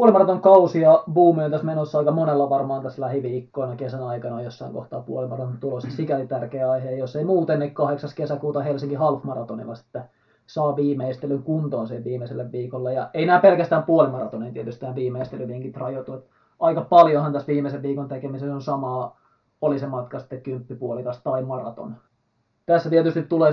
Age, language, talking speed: 20-39, Finnish, 155 wpm